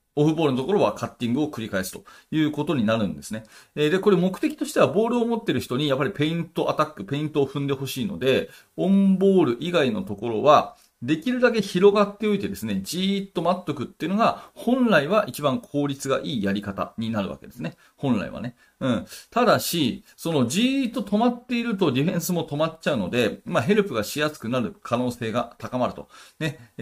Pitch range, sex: 120-190 Hz, male